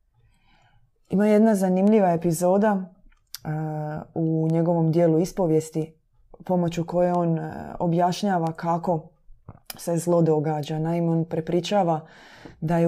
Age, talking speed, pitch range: 20-39, 110 wpm, 160-190 Hz